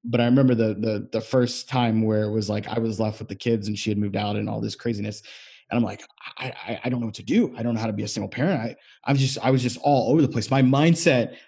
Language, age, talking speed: English, 30-49, 310 wpm